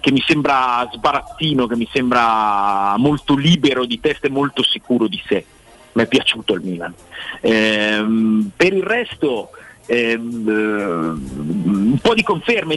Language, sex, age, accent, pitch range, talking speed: Italian, male, 40-59, native, 115-160 Hz, 140 wpm